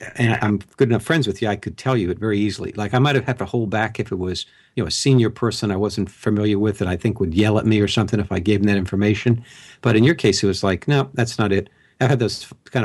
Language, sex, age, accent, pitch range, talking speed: English, male, 60-79, American, 100-125 Hz, 300 wpm